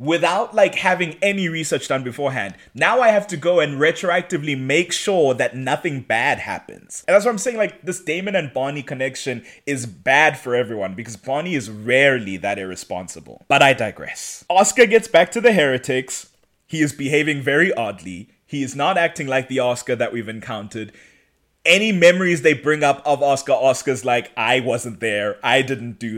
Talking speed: 185 wpm